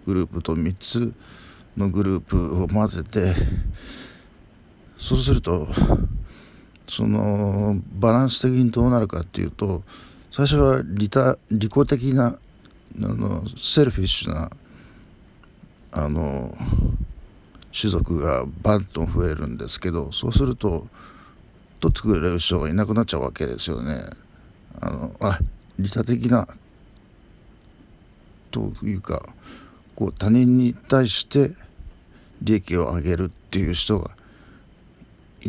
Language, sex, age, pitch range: Japanese, male, 50-69, 85-115 Hz